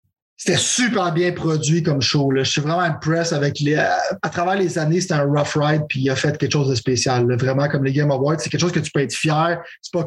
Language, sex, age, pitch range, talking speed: French, male, 30-49, 150-200 Hz, 270 wpm